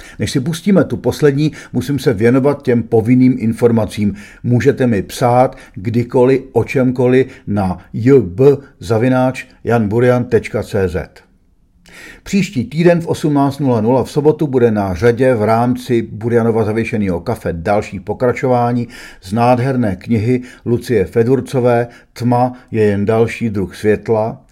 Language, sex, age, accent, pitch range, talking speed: Czech, male, 50-69, native, 105-130 Hz, 115 wpm